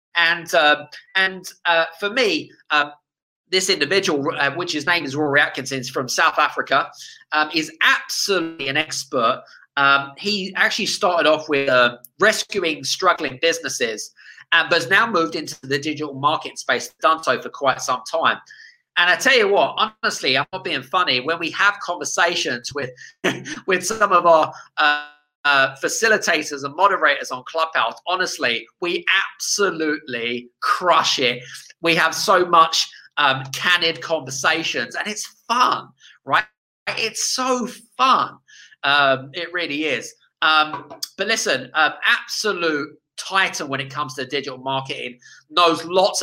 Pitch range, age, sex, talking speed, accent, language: 145-195 Hz, 30-49, male, 150 wpm, British, English